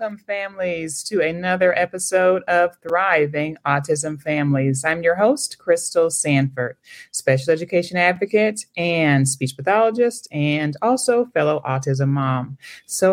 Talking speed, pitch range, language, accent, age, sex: 120 wpm, 140-185 Hz, English, American, 30-49, male